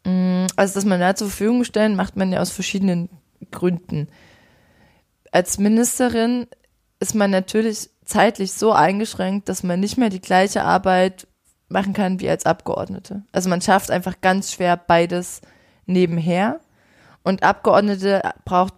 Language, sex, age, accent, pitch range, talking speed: German, female, 20-39, German, 180-200 Hz, 140 wpm